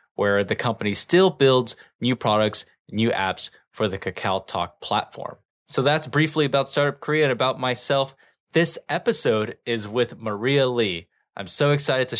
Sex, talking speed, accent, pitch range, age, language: male, 155 wpm, American, 110-135 Hz, 10-29, English